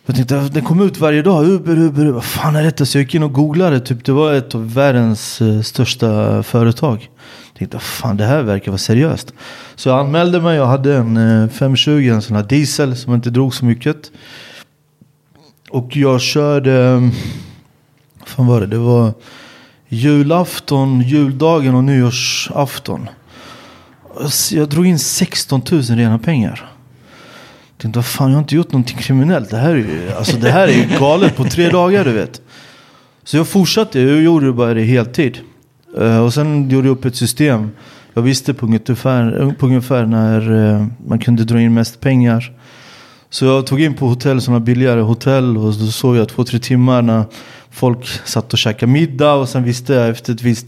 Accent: Swedish